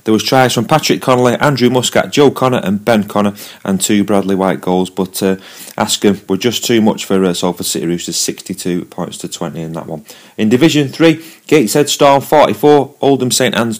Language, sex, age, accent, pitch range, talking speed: English, male, 30-49, British, 100-135 Hz, 210 wpm